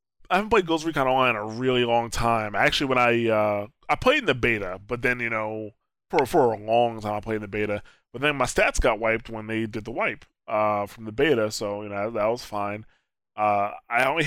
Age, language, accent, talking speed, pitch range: 20-39, English, American, 245 wpm, 105-125 Hz